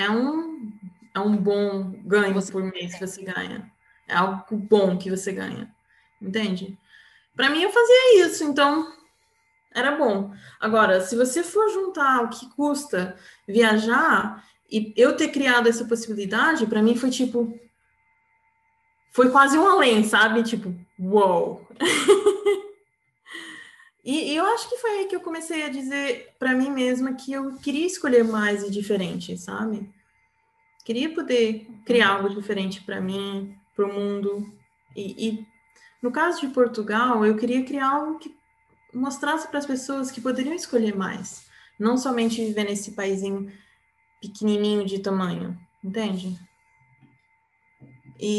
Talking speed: 140 wpm